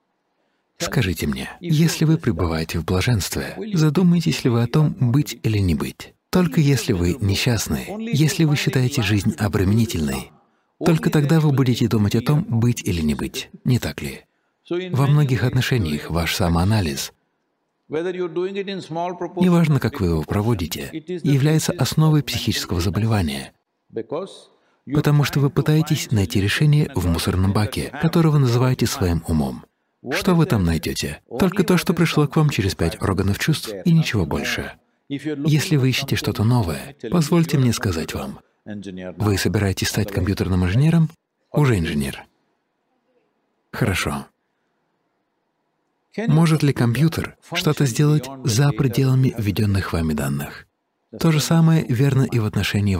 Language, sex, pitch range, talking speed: English, male, 95-155 Hz, 135 wpm